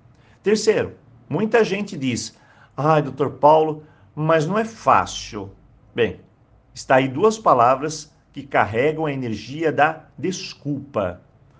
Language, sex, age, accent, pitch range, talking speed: Portuguese, male, 50-69, Brazilian, 110-160 Hz, 115 wpm